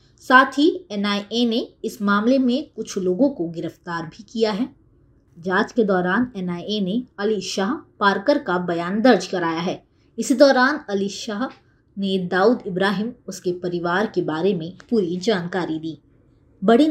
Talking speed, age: 155 wpm, 20-39